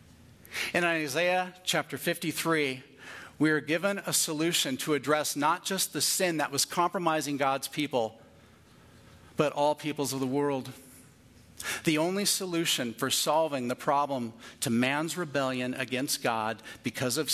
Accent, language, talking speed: American, English, 140 wpm